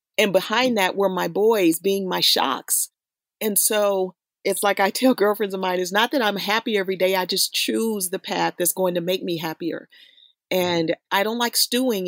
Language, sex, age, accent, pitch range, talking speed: English, female, 40-59, American, 195-245 Hz, 205 wpm